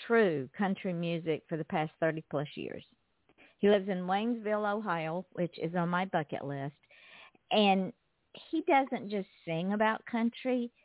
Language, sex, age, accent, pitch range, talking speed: English, female, 50-69, American, 160-205 Hz, 145 wpm